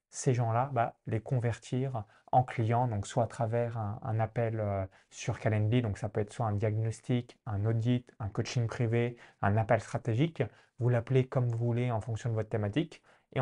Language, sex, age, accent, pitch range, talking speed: French, male, 20-39, French, 110-130 Hz, 190 wpm